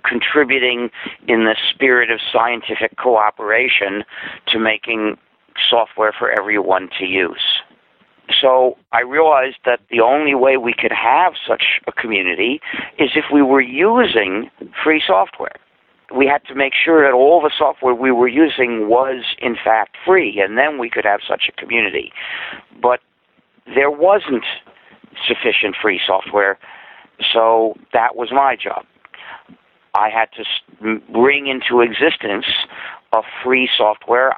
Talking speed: 135 wpm